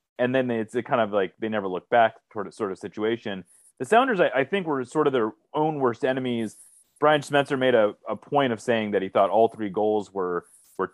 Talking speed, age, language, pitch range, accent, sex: 240 wpm, 30-49, English, 105-155 Hz, American, male